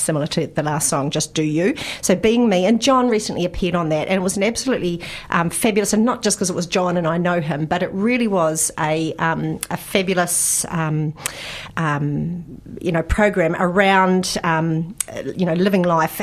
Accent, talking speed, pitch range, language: Australian, 200 wpm, 160-190 Hz, English